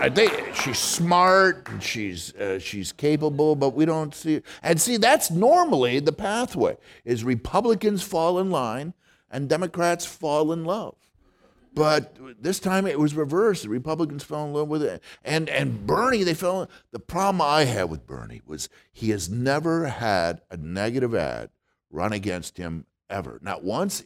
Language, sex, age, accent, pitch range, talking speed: English, male, 50-69, American, 120-180 Hz, 170 wpm